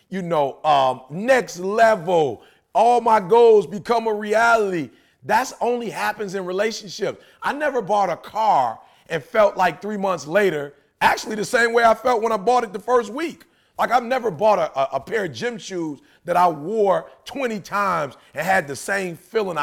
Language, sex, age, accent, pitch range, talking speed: English, male, 40-59, American, 170-230 Hz, 185 wpm